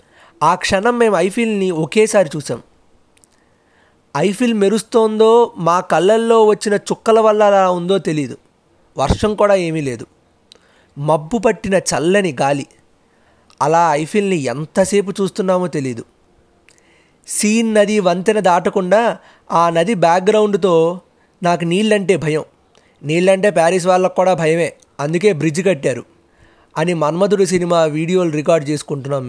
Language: Telugu